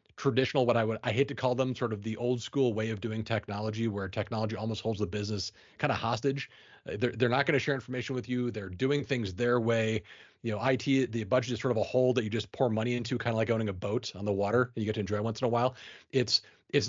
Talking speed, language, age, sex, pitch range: 275 wpm, English, 30-49, male, 110-130 Hz